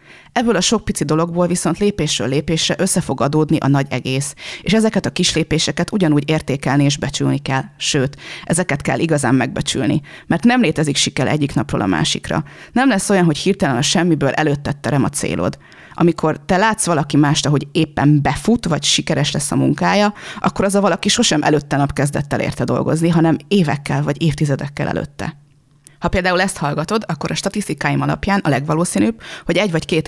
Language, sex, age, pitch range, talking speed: Hungarian, female, 30-49, 145-185 Hz, 180 wpm